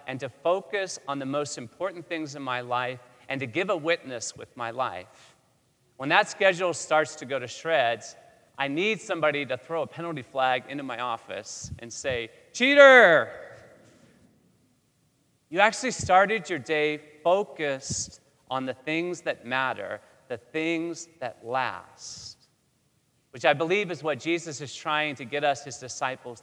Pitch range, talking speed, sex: 135-165 Hz, 155 wpm, male